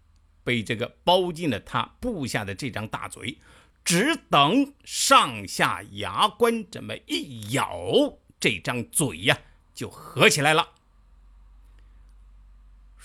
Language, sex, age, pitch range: Chinese, male, 50-69, 100-155 Hz